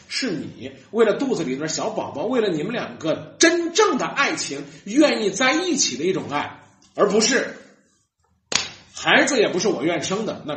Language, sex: Chinese, male